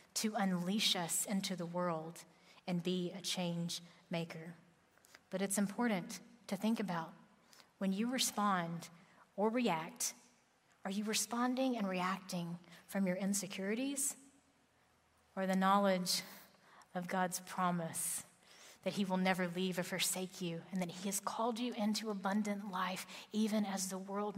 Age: 30-49